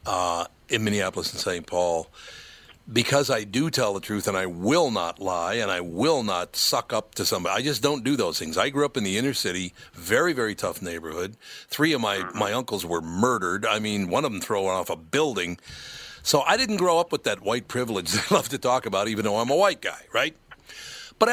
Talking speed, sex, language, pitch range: 230 wpm, male, English, 95-140 Hz